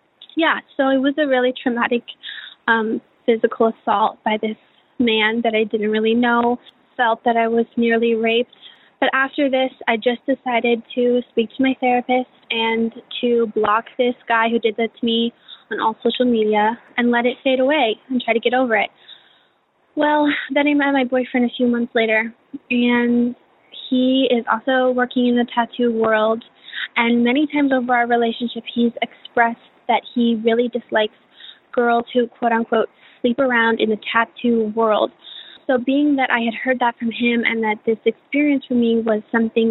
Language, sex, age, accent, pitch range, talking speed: English, female, 10-29, American, 230-255 Hz, 180 wpm